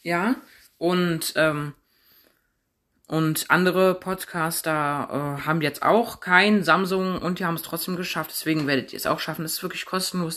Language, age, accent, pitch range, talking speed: German, 20-39, German, 150-180 Hz, 160 wpm